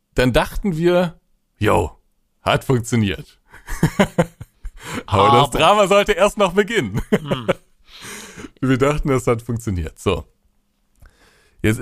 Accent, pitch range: German, 110-140 Hz